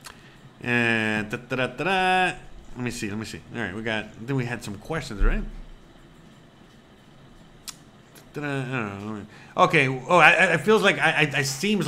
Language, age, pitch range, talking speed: English, 30-49, 125-170 Hz, 150 wpm